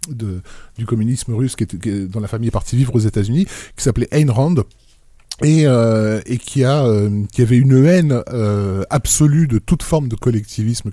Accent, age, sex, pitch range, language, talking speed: French, 20-39, male, 110-140 Hz, French, 210 wpm